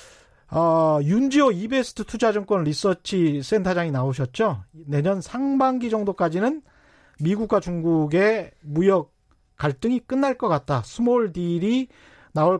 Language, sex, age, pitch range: Korean, male, 40-59, 155-220 Hz